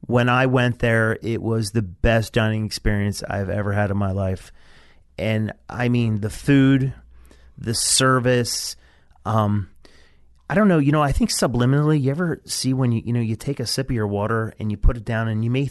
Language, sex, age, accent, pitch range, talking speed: English, male, 30-49, American, 100-125 Hz, 205 wpm